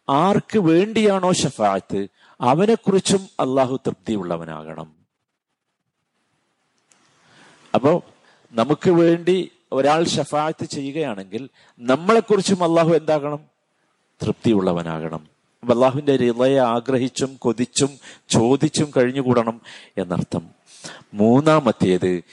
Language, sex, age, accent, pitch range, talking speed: Malayalam, male, 50-69, native, 100-145 Hz, 70 wpm